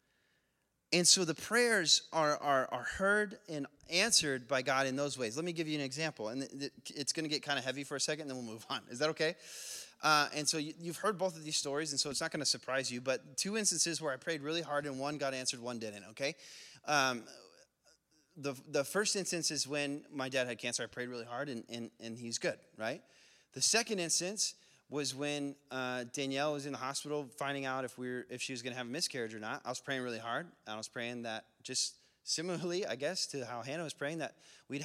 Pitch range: 130-160 Hz